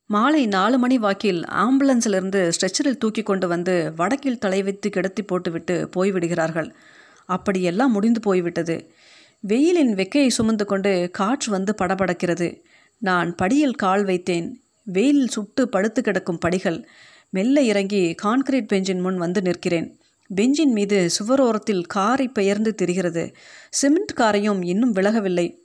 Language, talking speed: Tamil, 115 wpm